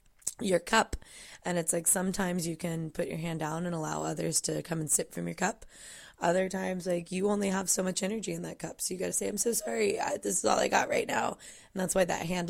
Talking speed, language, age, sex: 260 wpm, English, 20-39, female